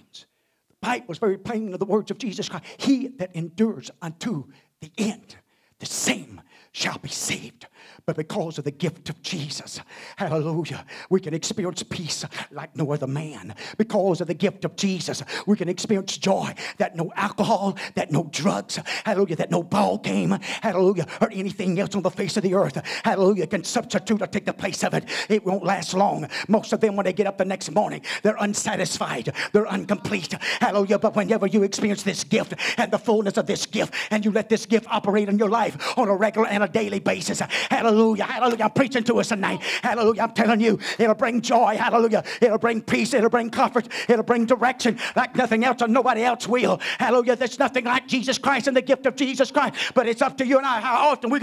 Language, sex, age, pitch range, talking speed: English, male, 50-69, 190-240 Hz, 205 wpm